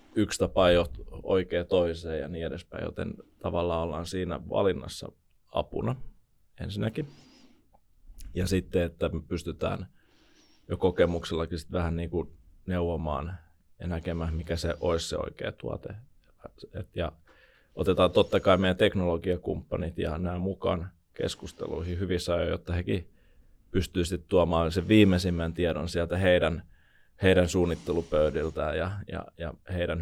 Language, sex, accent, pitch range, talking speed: Finnish, male, native, 85-95 Hz, 120 wpm